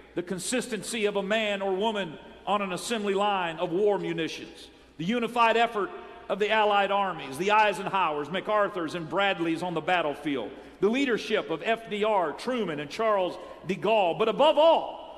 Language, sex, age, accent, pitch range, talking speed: English, male, 50-69, American, 195-235 Hz, 160 wpm